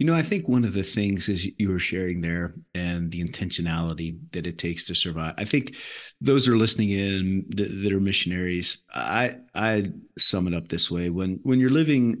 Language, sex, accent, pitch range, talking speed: English, male, American, 90-115 Hz, 205 wpm